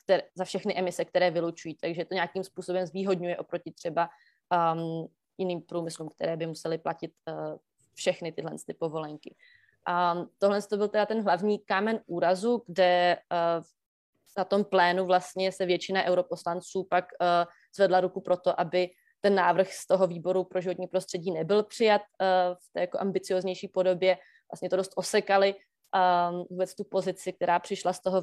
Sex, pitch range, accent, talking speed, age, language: female, 175-190 Hz, native, 165 wpm, 20-39, Czech